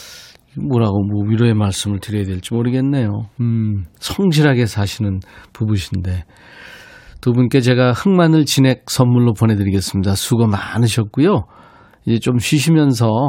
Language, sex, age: Korean, male, 40-59